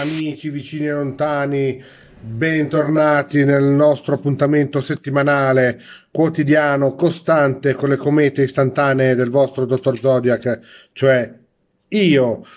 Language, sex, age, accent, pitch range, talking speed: Italian, male, 40-59, native, 130-155 Hz, 100 wpm